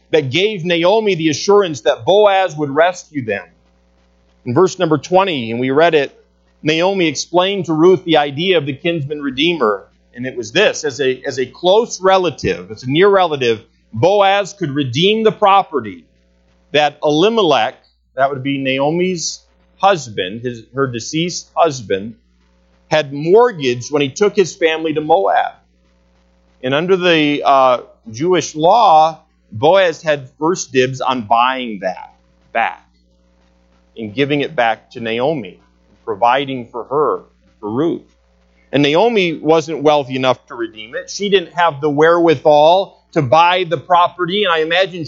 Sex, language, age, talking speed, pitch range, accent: male, English, 40-59, 150 wpm, 125-195 Hz, American